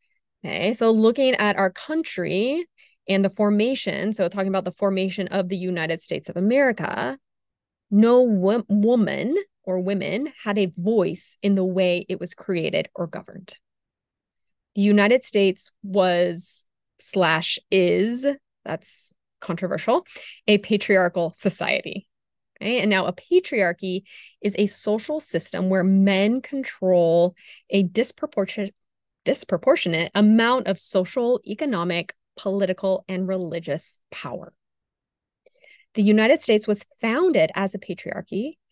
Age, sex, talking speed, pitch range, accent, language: 20-39, female, 120 wpm, 185-230 Hz, American, English